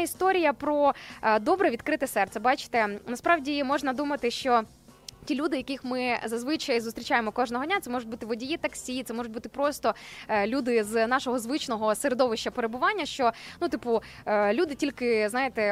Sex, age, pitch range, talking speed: female, 20-39, 230-285 Hz, 150 wpm